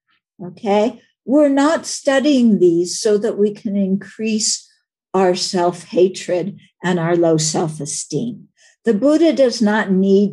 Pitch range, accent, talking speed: 185-265 Hz, American, 135 wpm